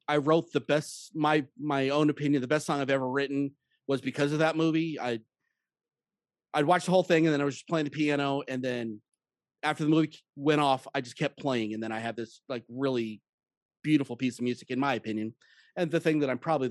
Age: 30-49